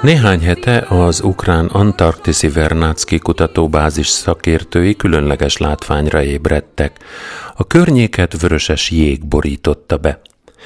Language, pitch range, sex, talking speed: Hungarian, 75-110 Hz, male, 100 wpm